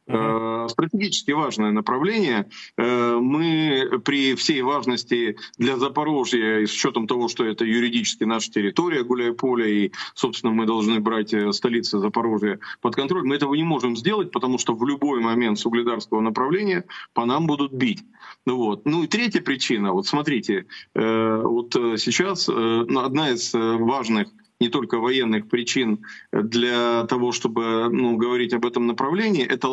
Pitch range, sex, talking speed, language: 115-145 Hz, male, 145 wpm, Russian